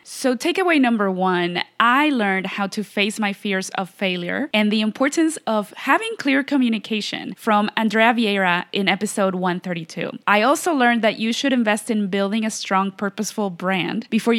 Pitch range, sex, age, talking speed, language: 195-250 Hz, female, 20-39, 165 wpm, English